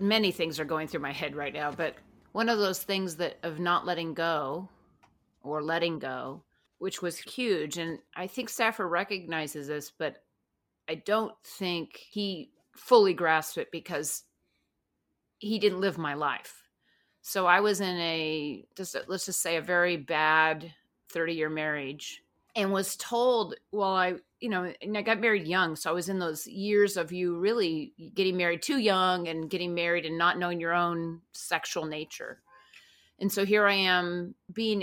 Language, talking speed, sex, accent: English, 170 wpm, female, American